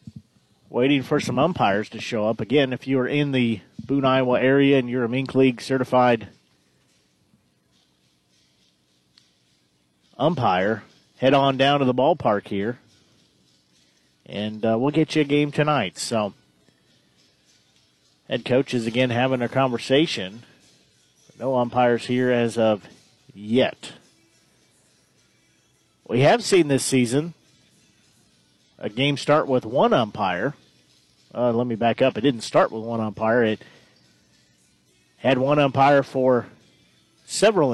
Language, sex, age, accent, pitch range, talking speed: English, male, 40-59, American, 110-135 Hz, 125 wpm